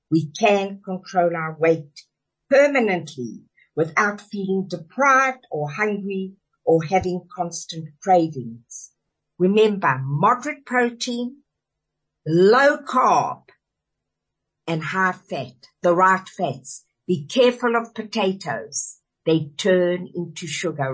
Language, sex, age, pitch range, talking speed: English, female, 60-79, 165-230 Hz, 95 wpm